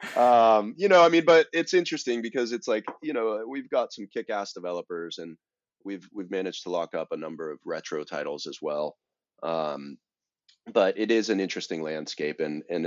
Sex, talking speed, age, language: male, 190 wpm, 30-49, English